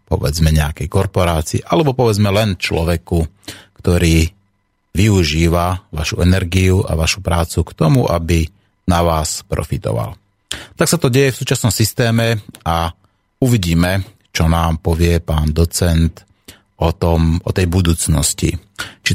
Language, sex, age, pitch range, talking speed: Slovak, male, 30-49, 85-100 Hz, 125 wpm